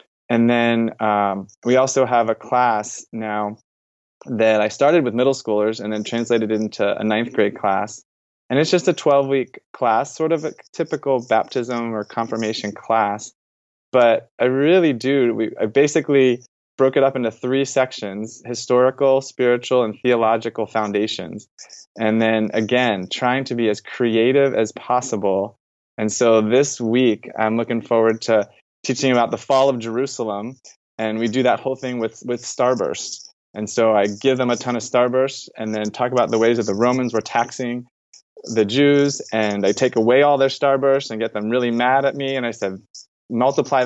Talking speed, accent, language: 175 wpm, American, English